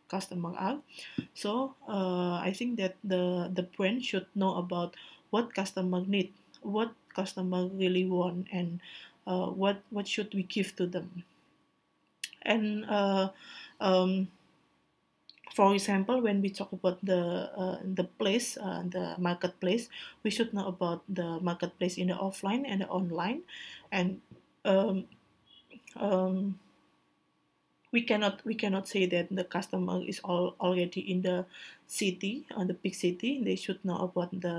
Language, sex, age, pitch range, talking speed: Indonesian, female, 20-39, 180-210 Hz, 140 wpm